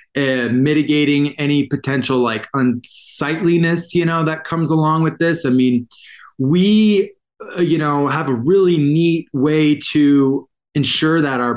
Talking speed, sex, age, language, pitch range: 145 wpm, male, 20-39, English, 130-170 Hz